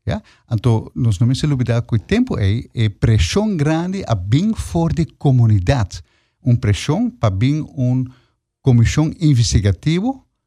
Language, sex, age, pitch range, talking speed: English, male, 50-69, 110-145 Hz, 130 wpm